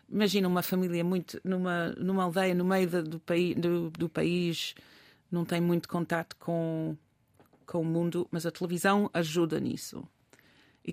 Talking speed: 150 wpm